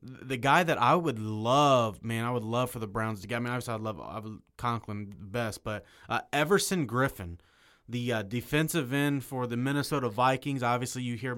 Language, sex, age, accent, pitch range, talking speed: English, male, 20-39, American, 115-130 Hz, 200 wpm